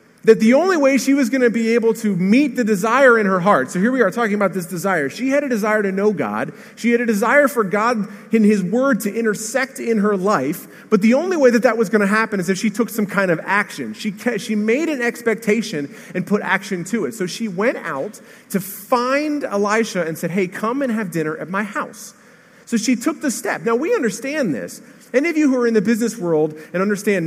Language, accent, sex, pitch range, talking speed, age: English, American, male, 185-235 Hz, 245 wpm, 30-49